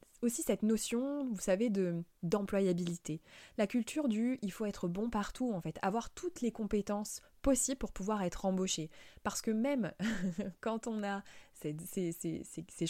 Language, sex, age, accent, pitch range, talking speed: French, female, 20-39, French, 170-225 Hz, 185 wpm